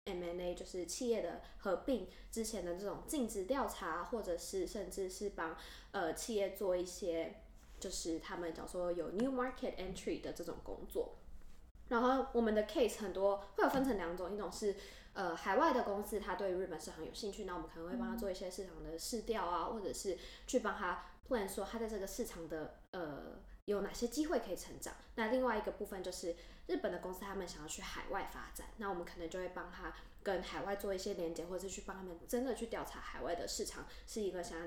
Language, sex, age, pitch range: Chinese, female, 10-29, 180-230 Hz